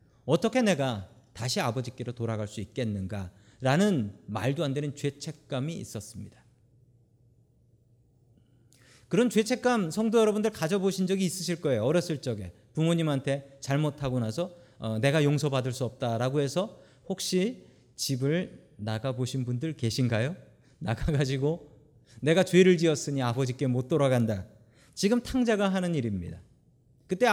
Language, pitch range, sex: Korean, 120-190 Hz, male